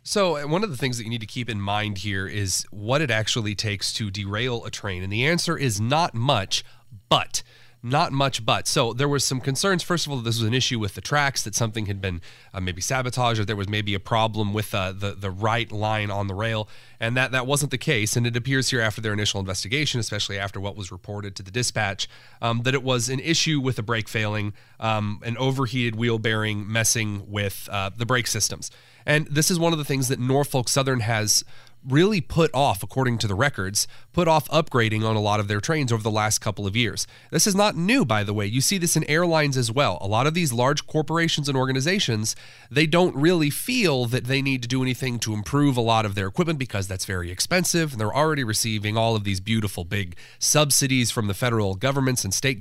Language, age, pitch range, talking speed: English, 30-49, 105-140 Hz, 235 wpm